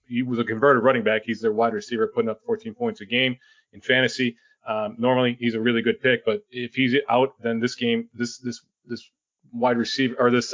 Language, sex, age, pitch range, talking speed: English, male, 30-49, 115-135 Hz, 220 wpm